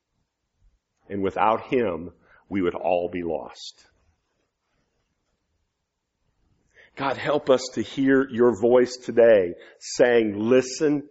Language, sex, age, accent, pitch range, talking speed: English, male, 50-69, American, 115-155 Hz, 95 wpm